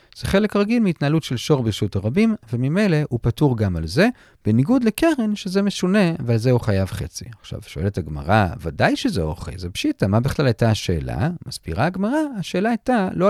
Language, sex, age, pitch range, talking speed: Hebrew, male, 40-59, 105-175 Hz, 180 wpm